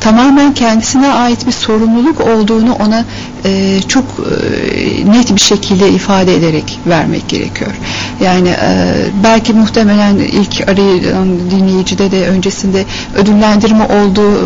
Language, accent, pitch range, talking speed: Turkish, native, 195-225 Hz, 115 wpm